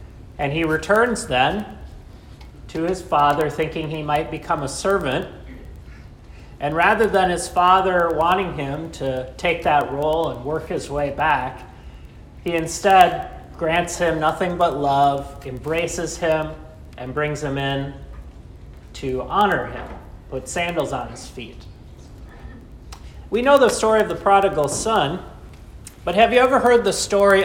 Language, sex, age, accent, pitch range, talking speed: English, male, 40-59, American, 135-185 Hz, 140 wpm